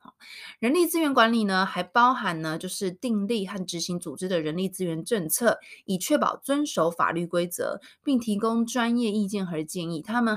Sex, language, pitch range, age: female, Chinese, 170-235 Hz, 20-39